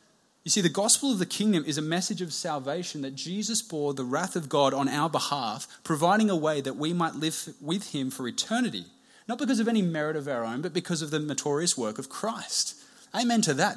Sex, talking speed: male, 225 wpm